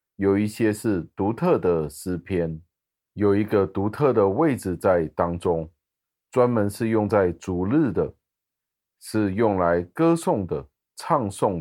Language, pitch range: Chinese, 90-115 Hz